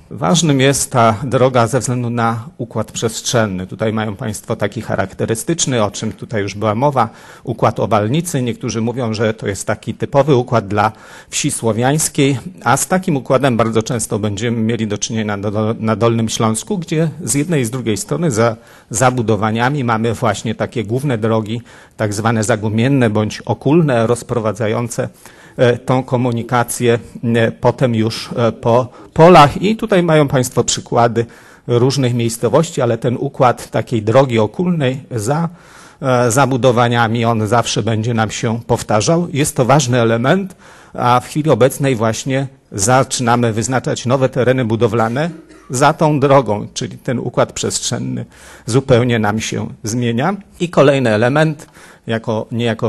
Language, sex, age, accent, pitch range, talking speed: Polish, male, 40-59, native, 115-135 Hz, 140 wpm